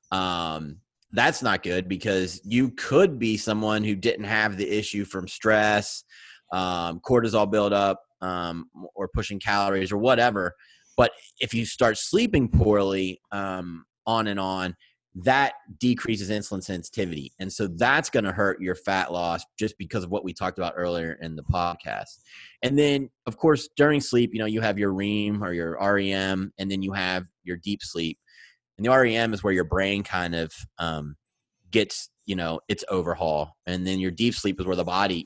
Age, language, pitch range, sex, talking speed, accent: 30-49, English, 85-105 Hz, male, 180 wpm, American